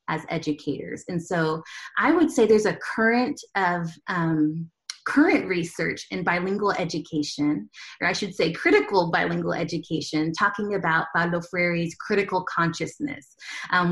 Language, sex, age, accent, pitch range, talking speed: English, female, 30-49, American, 170-225 Hz, 135 wpm